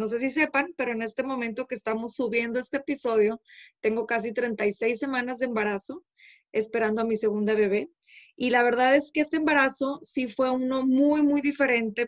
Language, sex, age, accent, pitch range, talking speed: Spanish, female, 20-39, Mexican, 225-265 Hz, 185 wpm